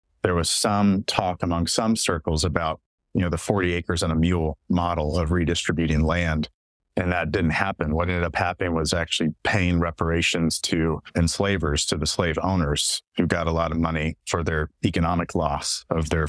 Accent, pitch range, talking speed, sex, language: American, 80-100 Hz, 185 wpm, male, English